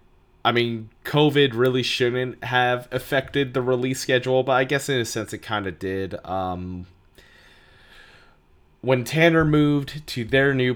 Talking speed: 145 wpm